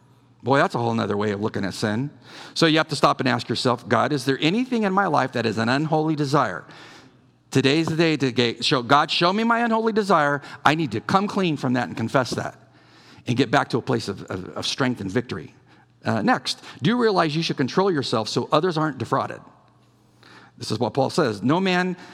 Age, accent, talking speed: 50-69, American, 225 wpm